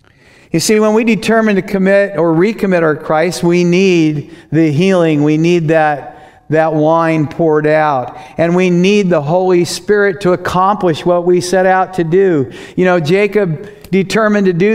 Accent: American